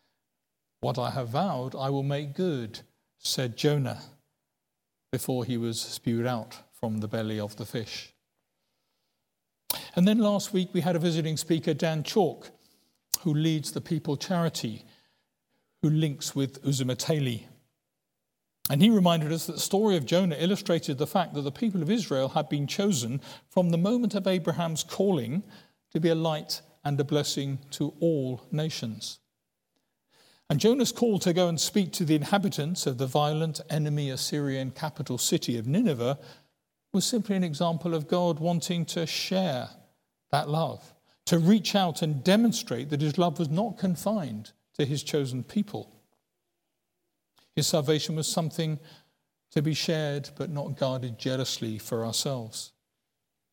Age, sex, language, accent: 50-69, male, English, British